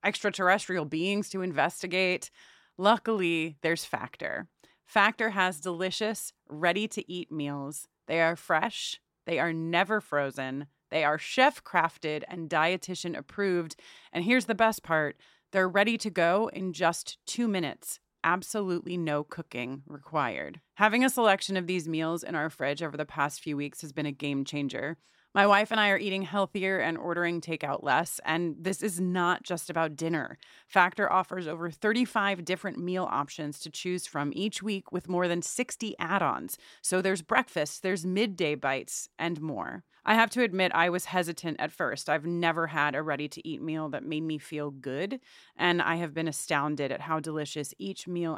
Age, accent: 30-49, American